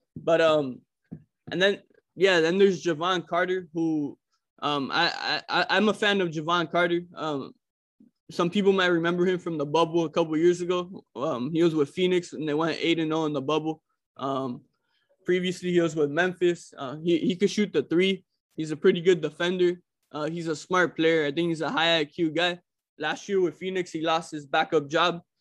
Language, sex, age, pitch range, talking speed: English, male, 20-39, 155-180 Hz, 200 wpm